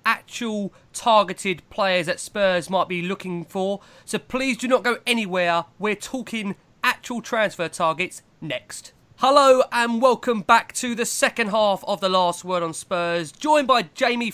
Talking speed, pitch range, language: 160 wpm, 175-220 Hz, English